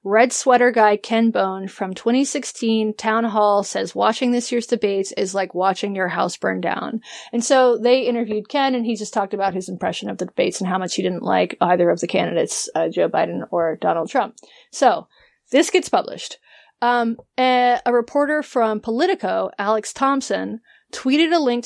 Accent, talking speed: American, 185 wpm